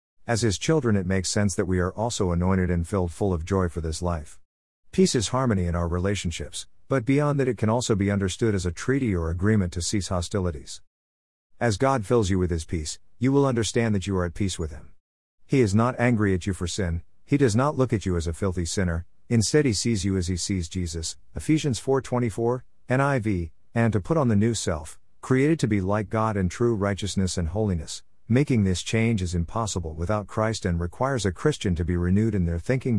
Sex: male